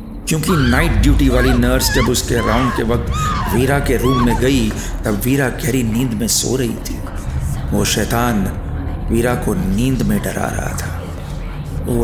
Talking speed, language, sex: 165 wpm, Hindi, male